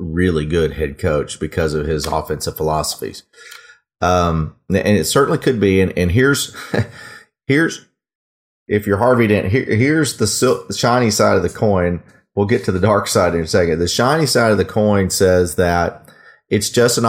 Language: English